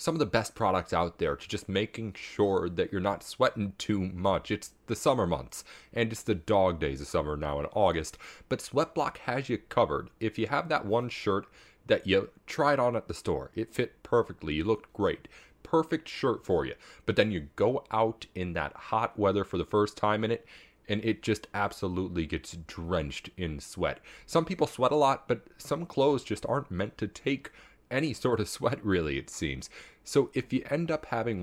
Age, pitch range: 30-49, 95-125 Hz